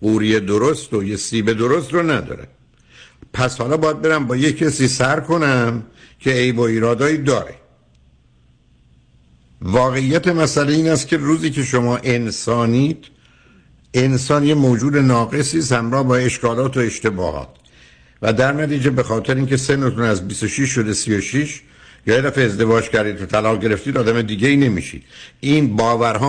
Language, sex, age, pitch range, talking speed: Persian, male, 60-79, 115-145 Hz, 150 wpm